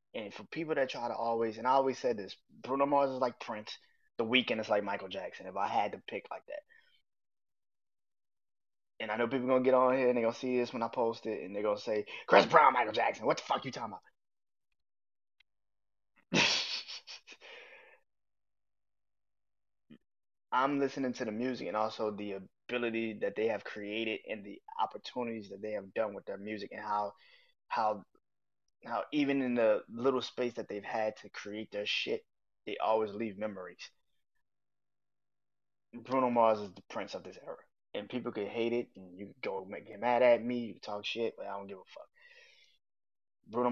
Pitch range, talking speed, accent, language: 105-130 Hz, 190 wpm, American, English